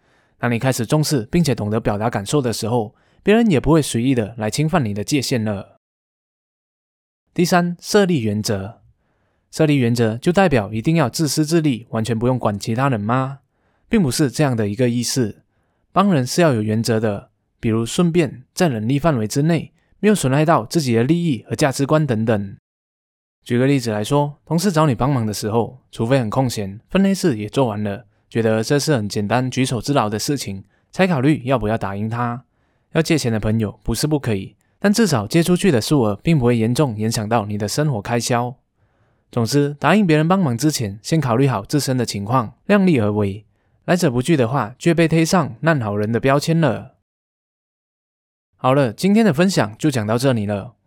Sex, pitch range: male, 110-155 Hz